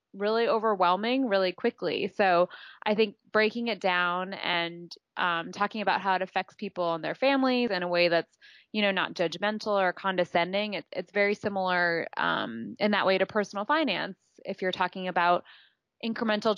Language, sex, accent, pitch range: English, female, American, 175-210 Hz